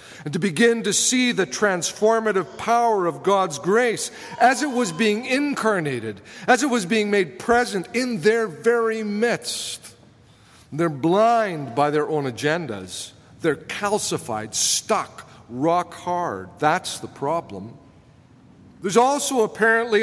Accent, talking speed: American, 130 wpm